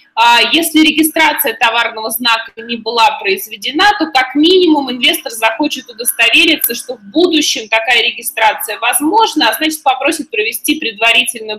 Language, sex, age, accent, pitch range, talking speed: Russian, female, 20-39, native, 220-310 Hz, 125 wpm